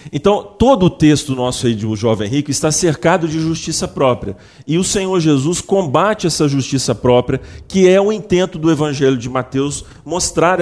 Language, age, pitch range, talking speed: Portuguese, 40-59, 130-185 Hz, 180 wpm